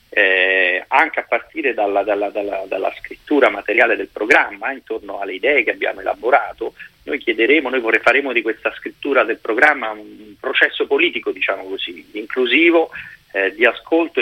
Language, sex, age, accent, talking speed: Italian, male, 40-59, native, 150 wpm